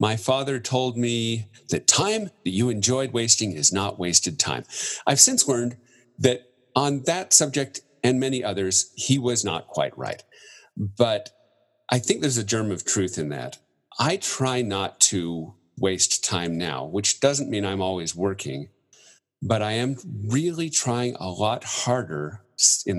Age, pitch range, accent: 40-59, 85-125 Hz, American